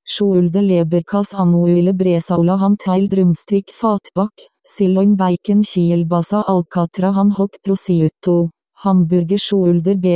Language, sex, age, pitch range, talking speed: English, female, 30-49, 180-200 Hz, 105 wpm